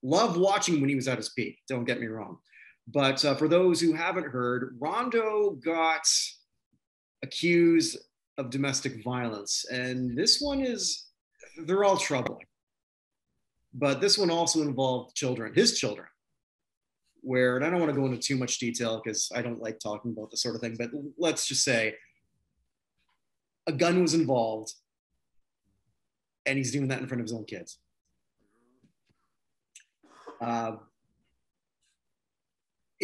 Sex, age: male, 30-49